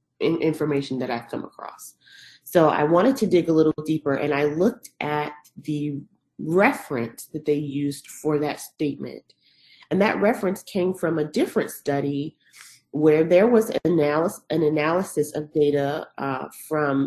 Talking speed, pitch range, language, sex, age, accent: 155 wpm, 145-170 Hz, English, female, 30-49, American